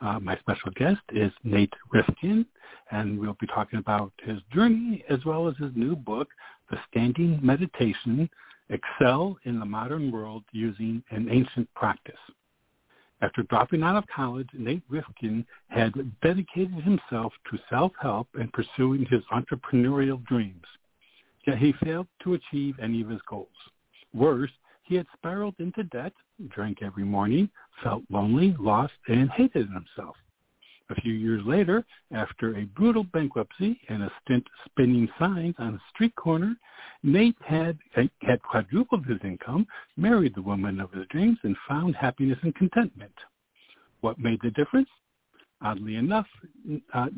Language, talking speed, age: English, 145 wpm, 60-79